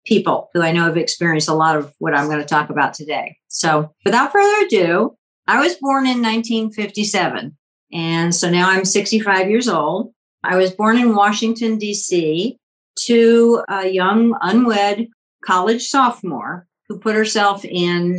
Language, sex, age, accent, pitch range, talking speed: English, female, 50-69, American, 170-215 Hz, 160 wpm